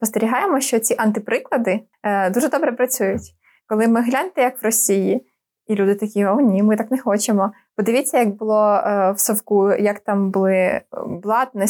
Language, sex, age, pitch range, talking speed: Ukrainian, female, 20-39, 200-245 Hz, 170 wpm